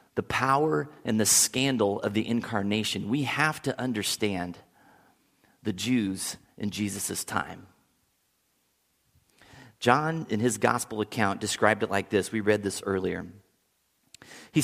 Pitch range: 105-125 Hz